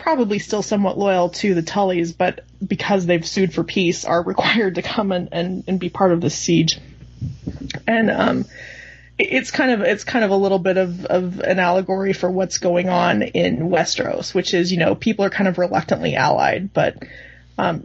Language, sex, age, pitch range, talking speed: English, female, 20-39, 175-205 Hz, 200 wpm